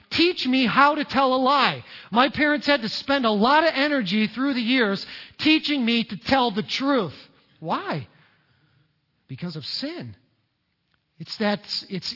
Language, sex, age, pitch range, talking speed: English, male, 40-59, 210-265 Hz, 160 wpm